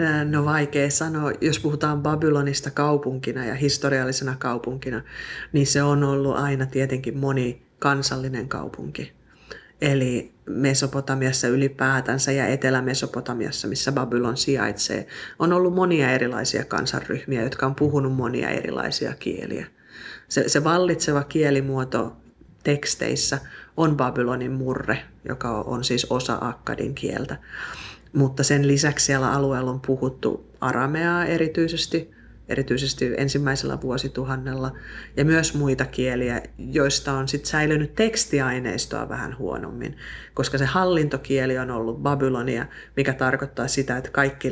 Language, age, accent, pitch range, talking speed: Finnish, 30-49, native, 125-145 Hz, 115 wpm